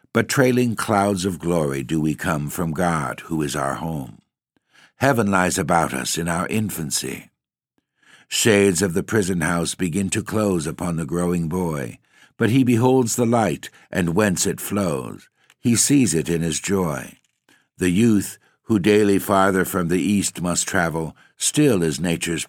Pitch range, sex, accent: 80-100 Hz, male, American